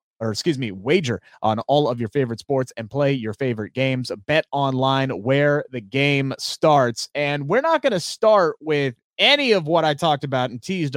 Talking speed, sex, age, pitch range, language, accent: 195 wpm, male, 30-49, 130-205 Hz, English, American